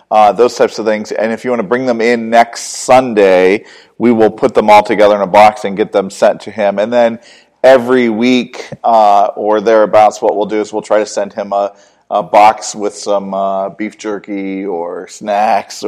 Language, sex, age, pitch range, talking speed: English, male, 40-59, 105-120 Hz, 210 wpm